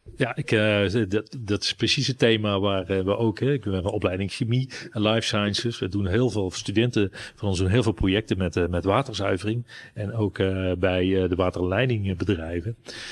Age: 40-59